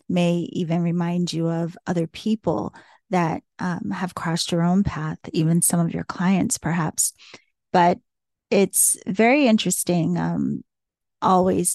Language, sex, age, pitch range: English, female, 30-49, 170-195 Hz